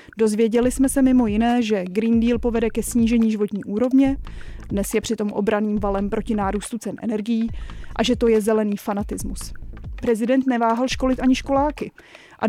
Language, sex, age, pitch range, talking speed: Czech, female, 20-39, 220-245 Hz, 165 wpm